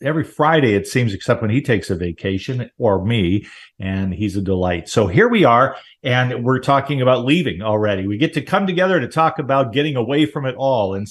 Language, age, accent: English, 50-69, American